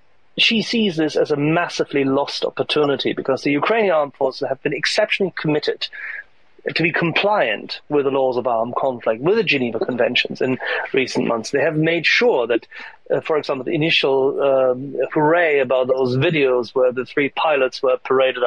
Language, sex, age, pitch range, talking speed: English, male, 30-49, 135-185 Hz, 175 wpm